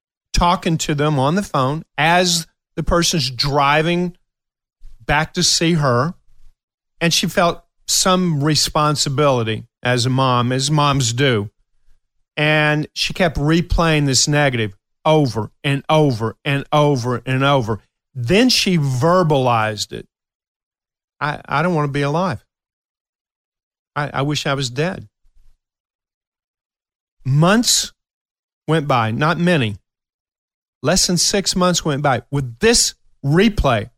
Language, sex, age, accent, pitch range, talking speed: English, male, 40-59, American, 125-165 Hz, 120 wpm